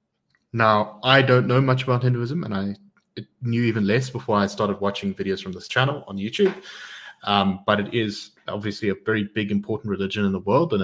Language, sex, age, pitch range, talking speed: English, male, 20-39, 100-125 Hz, 200 wpm